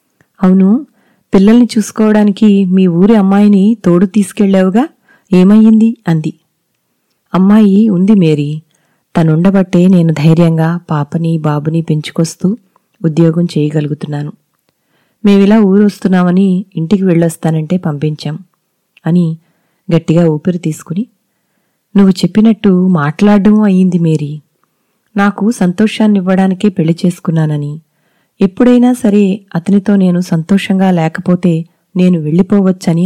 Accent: native